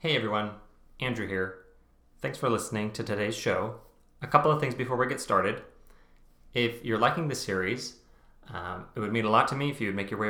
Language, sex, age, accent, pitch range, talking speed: English, male, 30-49, American, 100-125 Hz, 215 wpm